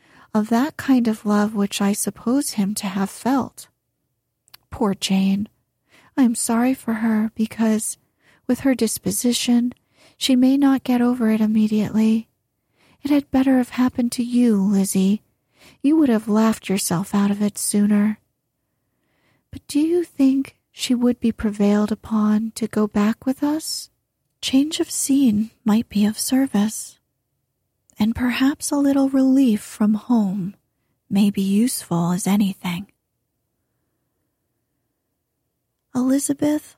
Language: English